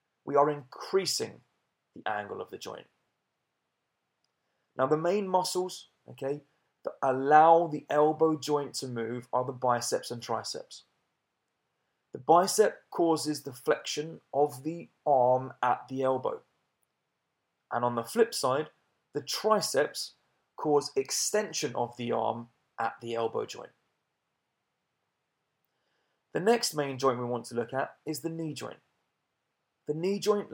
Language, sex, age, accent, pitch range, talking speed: English, male, 30-49, British, 130-170 Hz, 130 wpm